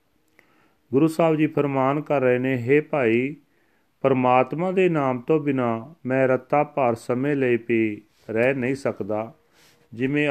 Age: 40-59